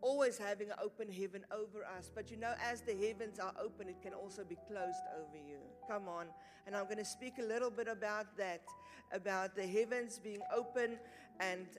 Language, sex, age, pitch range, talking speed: English, female, 50-69, 205-265 Hz, 205 wpm